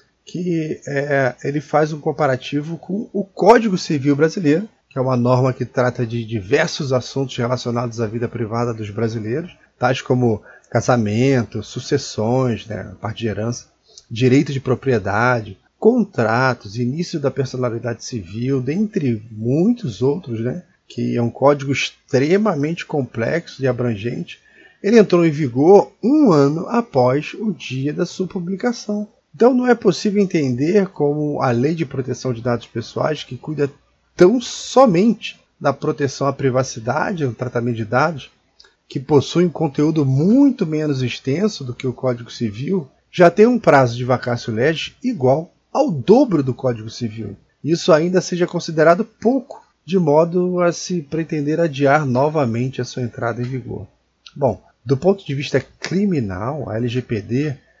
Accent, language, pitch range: Brazilian, Portuguese, 125-170 Hz